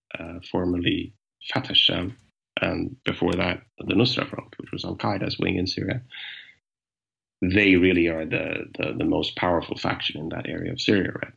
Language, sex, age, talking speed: English, male, 30-49, 170 wpm